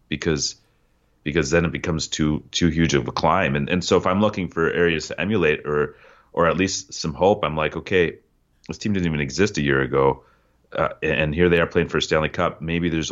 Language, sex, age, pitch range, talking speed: English, male, 30-49, 75-90 Hz, 230 wpm